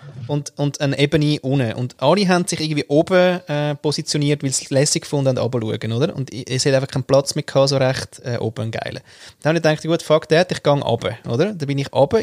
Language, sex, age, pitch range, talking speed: German, male, 20-39, 135-170 Hz, 230 wpm